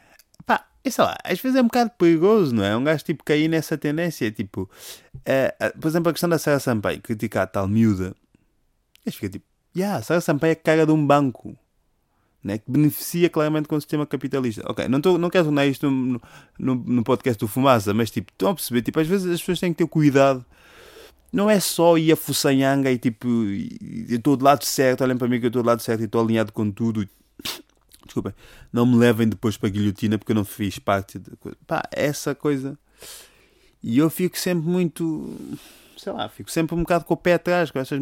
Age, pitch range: 20-39, 110-160 Hz